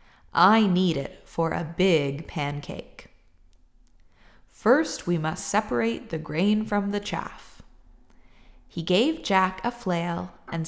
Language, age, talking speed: English, 20-39, 125 wpm